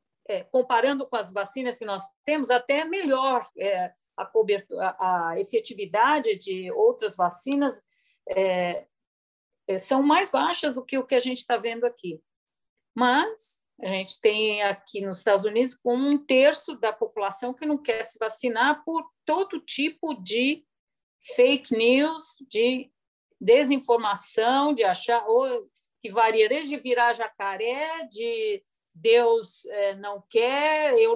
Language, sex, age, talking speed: Portuguese, female, 50-69, 135 wpm